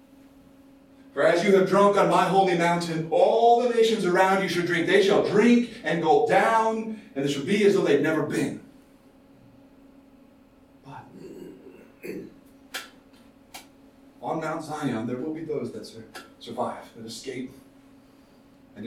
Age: 40-59